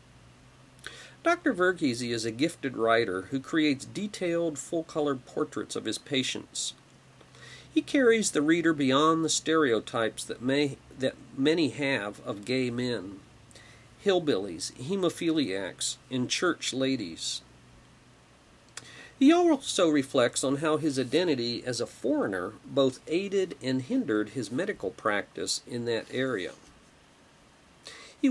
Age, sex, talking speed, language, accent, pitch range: 50-69, male, 115 wpm, English, American, 120-160 Hz